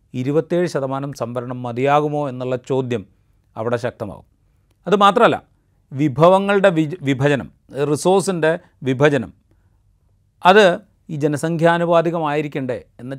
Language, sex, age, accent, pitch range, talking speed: Malayalam, male, 40-59, native, 125-165 Hz, 75 wpm